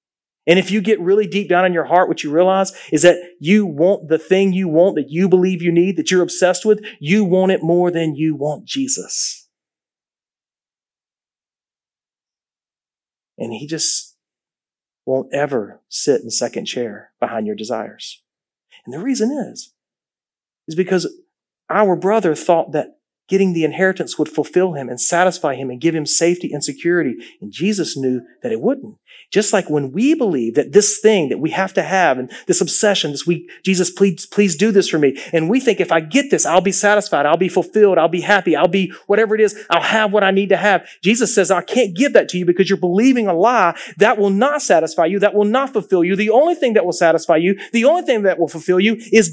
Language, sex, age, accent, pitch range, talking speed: English, male, 40-59, American, 170-215 Hz, 210 wpm